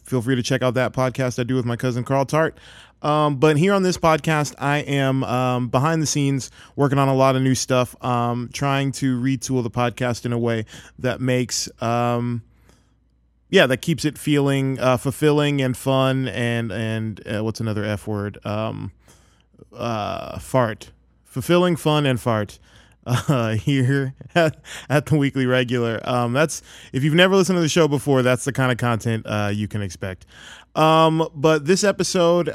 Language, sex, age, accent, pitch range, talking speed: English, male, 20-39, American, 120-145 Hz, 180 wpm